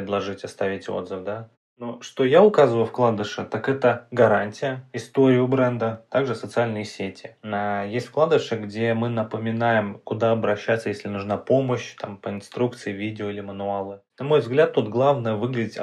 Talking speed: 150 wpm